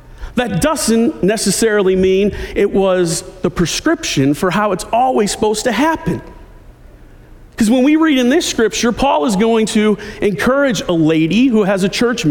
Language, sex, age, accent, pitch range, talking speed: English, male, 40-59, American, 190-275 Hz, 160 wpm